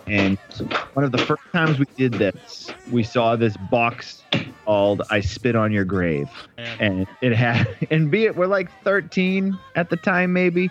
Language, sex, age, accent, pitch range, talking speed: English, male, 30-49, American, 100-130 Hz, 180 wpm